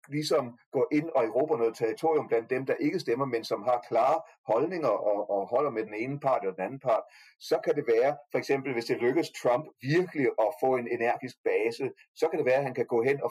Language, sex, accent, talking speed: Danish, male, native, 245 wpm